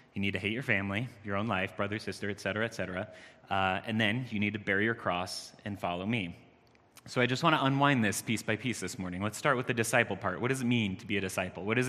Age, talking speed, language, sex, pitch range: 30-49, 280 wpm, English, male, 100-120 Hz